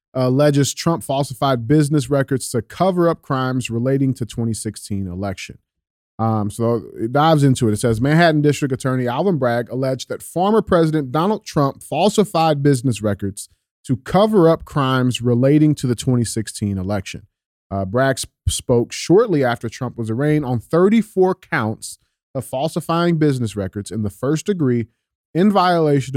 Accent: American